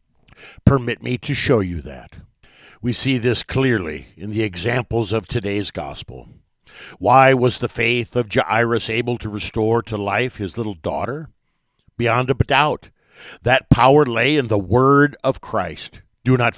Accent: American